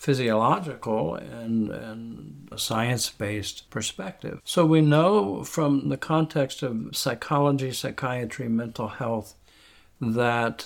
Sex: male